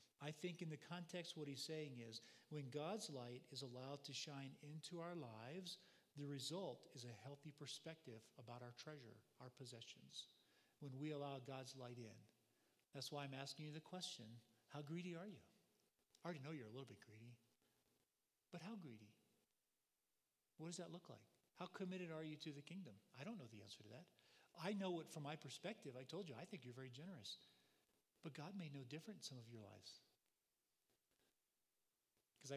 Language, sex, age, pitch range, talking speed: English, male, 40-59, 125-155 Hz, 190 wpm